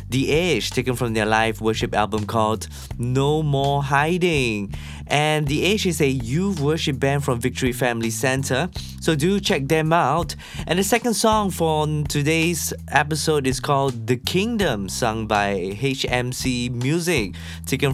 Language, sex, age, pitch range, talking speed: English, male, 20-39, 115-165 Hz, 150 wpm